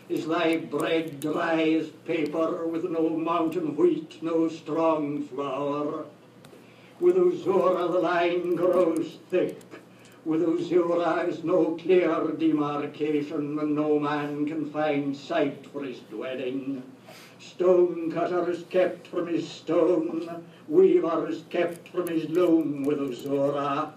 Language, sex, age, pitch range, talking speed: English, male, 60-79, 150-170 Hz, 120 wpm